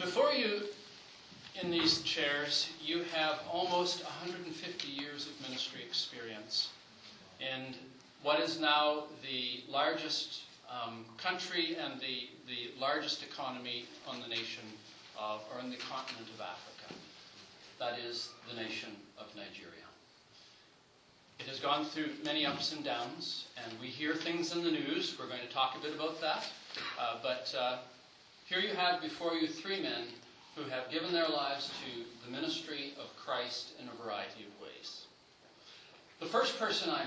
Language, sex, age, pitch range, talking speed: English, male, 40-59, 125-165 Hz, 150 wpm